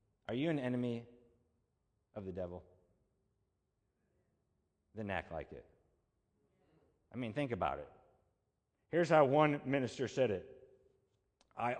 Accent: American